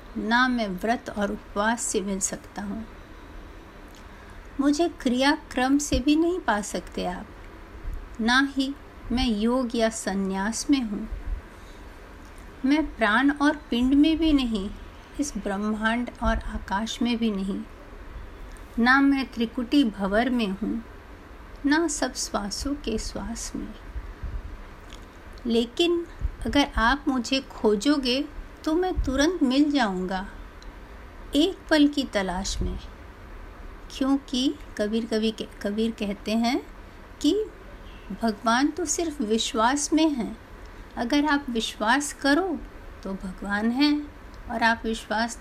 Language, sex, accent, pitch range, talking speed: Hindi, female, native, 205-280 Hz, 120 wpm